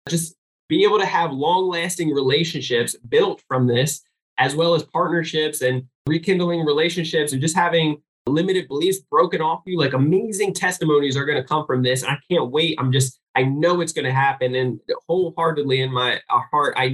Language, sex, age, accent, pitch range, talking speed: English, male, 20-39, American, 145-180 Hz, 180 wpm